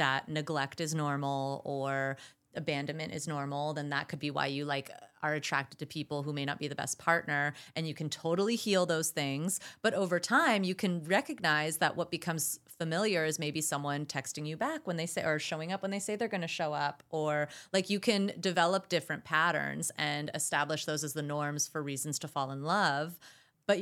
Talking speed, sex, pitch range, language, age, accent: 210 wpm, female, 150-185 Hz, English, 30-49, American